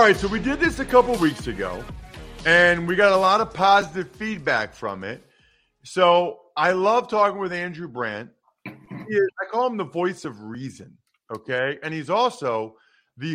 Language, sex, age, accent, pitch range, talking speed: English, male, 40-59, American, 150-200 Hz, 175 wpm